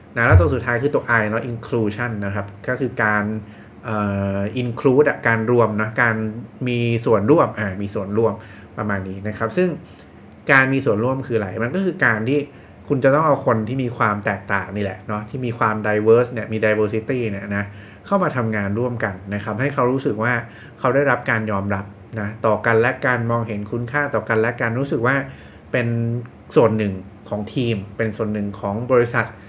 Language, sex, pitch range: English, male, 105-120 Hz